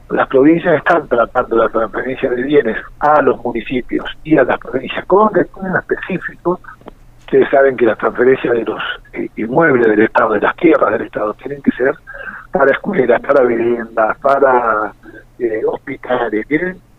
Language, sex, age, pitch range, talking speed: Spanish, male, 50-69, 120-180 Hz, 155 wpm